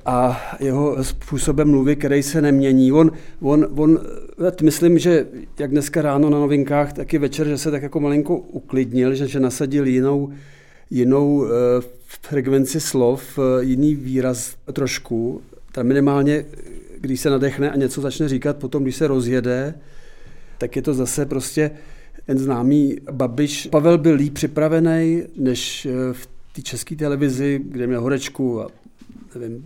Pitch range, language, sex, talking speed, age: 125-145 Hz, Czech, male, 150 wpm, 40-59